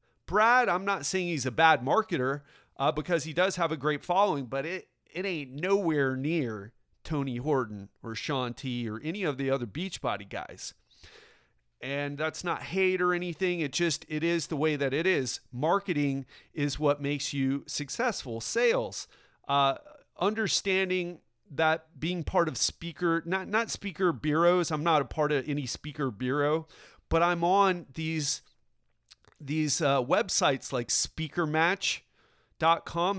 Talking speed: 150 wpm